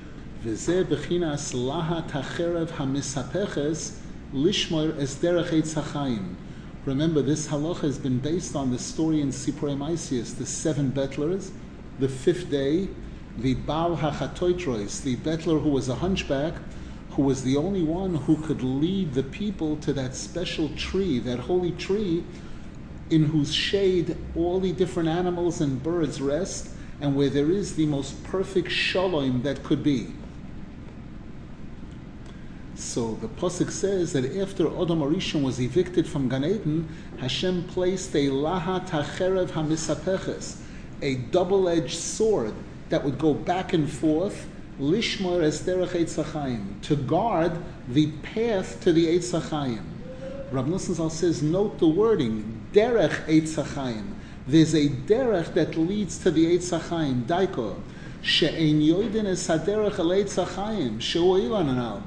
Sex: male